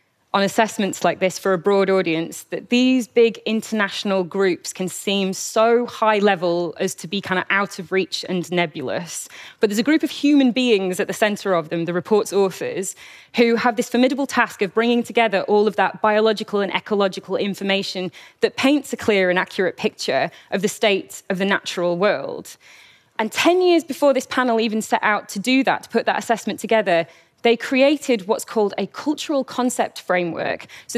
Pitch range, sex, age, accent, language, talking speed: 195-245 Hz, female, 20-39, British, Russian, 190 wpm